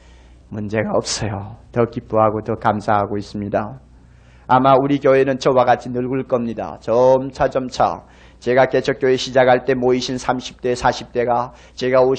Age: 40-59